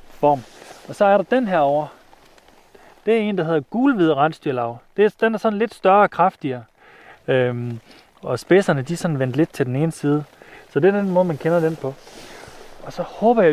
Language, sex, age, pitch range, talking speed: Danish, male, 30-49, 130-170 Hz, 215 wpm